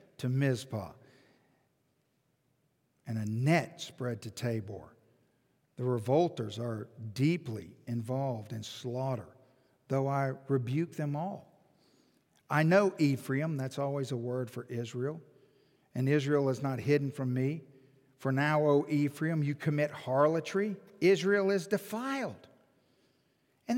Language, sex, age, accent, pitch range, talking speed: English, male, 50-69, American, 135-215 Hz, 120 wpm